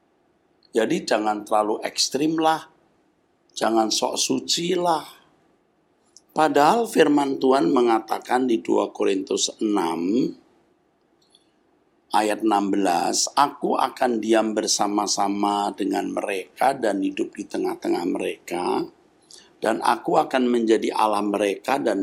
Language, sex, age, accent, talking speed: Indonesian, male, 50-69, native, 100 wpm